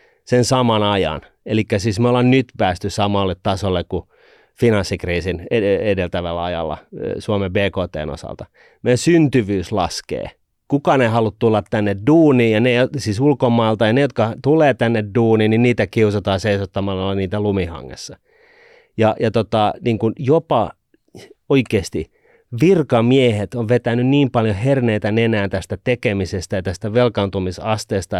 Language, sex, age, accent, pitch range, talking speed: Finnish, male, 30-49, native, 100-140 Hz, 130 wpm